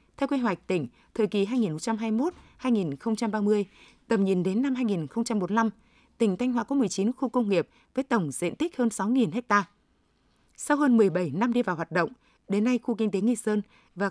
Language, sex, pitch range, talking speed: Vietnamese, female, 195-245 Hz, 185 wpm